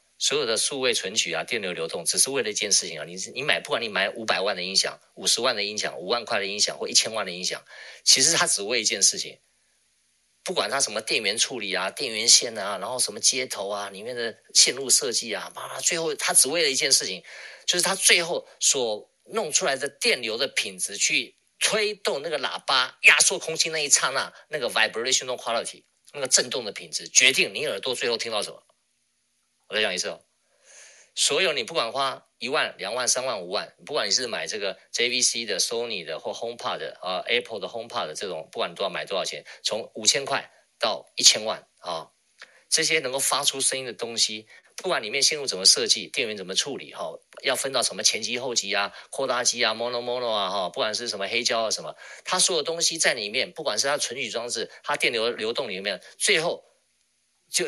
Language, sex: Chinese, male